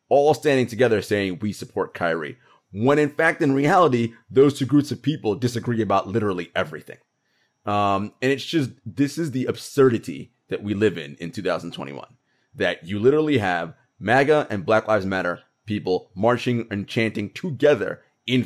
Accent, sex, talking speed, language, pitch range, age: American, male, 165 wpm, English, 95-125 Hz, 30-49